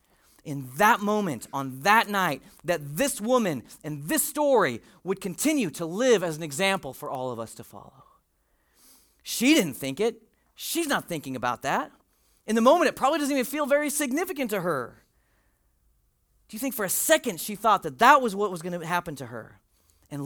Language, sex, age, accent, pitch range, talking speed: English, male, 40-59, American, 150-235 Hz, 190 wpm